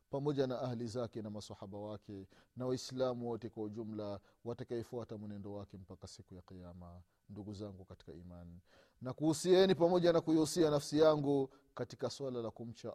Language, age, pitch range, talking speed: Swahili, 30-49, 110-150 Hz, 160 wpm